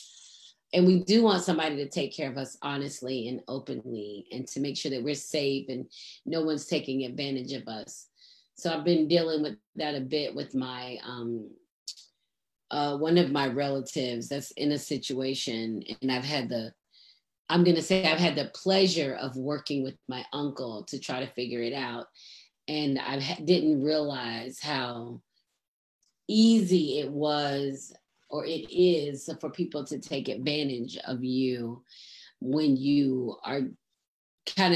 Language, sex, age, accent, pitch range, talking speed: English, female, 30-49, American, 130-165 Hz, 155 wpm